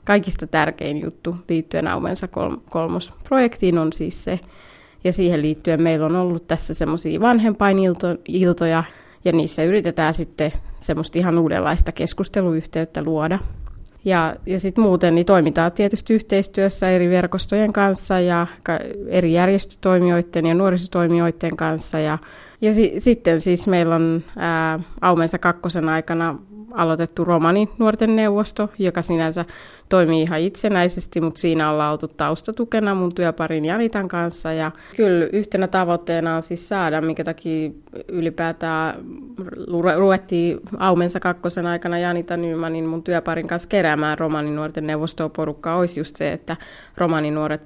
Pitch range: 160-185 Hz